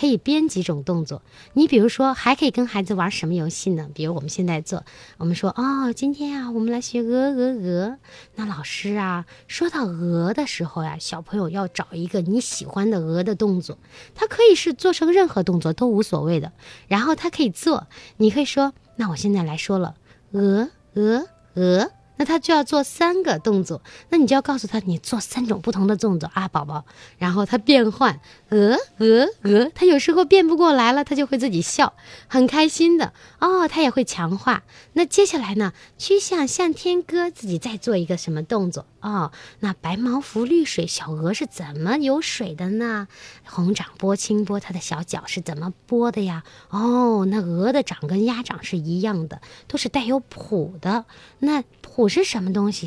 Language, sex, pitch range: Chinese, female, 175-270 Hz